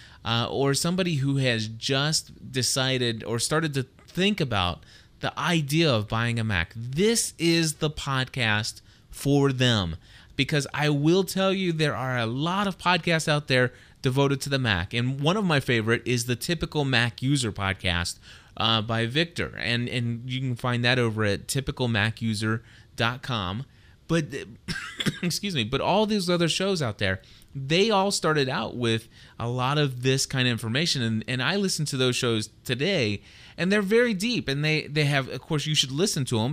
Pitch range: 115-155 Hz